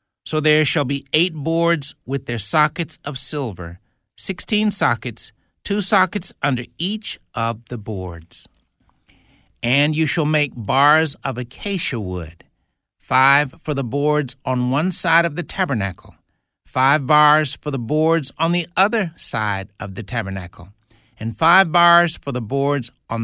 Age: 60-79